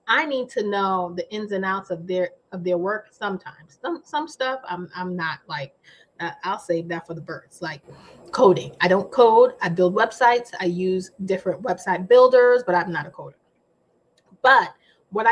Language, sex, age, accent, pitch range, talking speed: English, female, 30-49, American, 185-240 Hz, 190 wpm